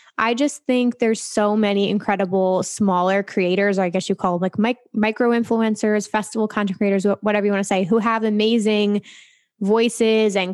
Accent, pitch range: American, 190-225 Hz